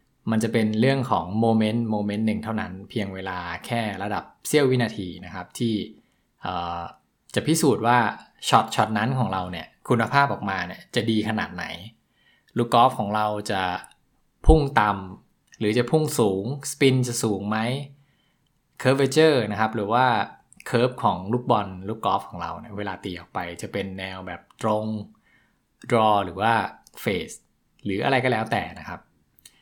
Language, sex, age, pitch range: English, male, 20-39, 100-120 Hz